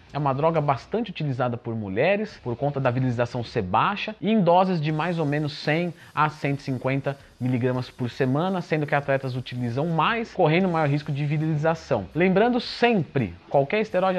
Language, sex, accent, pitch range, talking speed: Portuguese, male, Brazilian, 130-180 Hz, 165 wpm